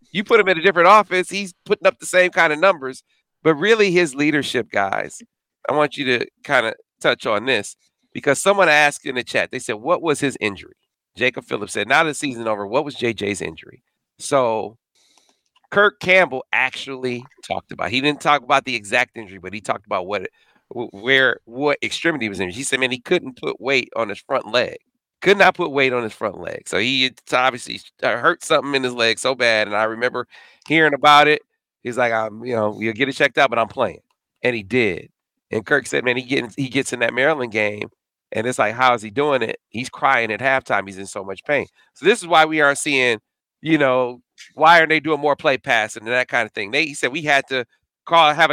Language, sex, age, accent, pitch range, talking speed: English, male, 40-59, American, 125-160 Hz, 225 wpm